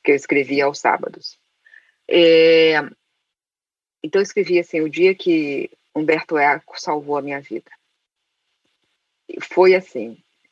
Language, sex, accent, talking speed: Portuguese, female, Brazilian, 115 wpm